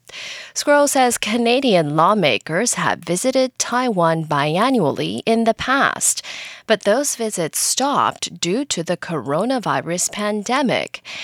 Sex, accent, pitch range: female, American, 165-250 Hz